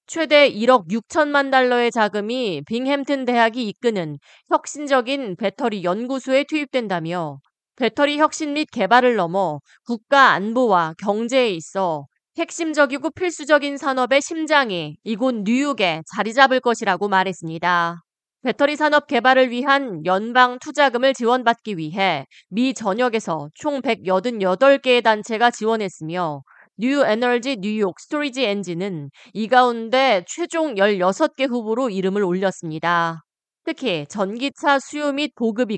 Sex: female